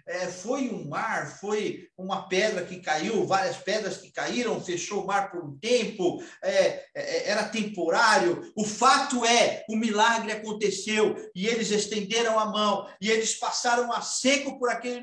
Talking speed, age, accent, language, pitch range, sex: 150 wpm, 50-69, Brazilian, Portuguese, 170-230 Hz, male